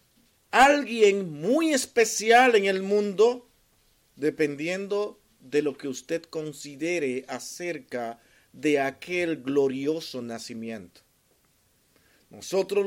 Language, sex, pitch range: Spanish, male, 140-200 Hz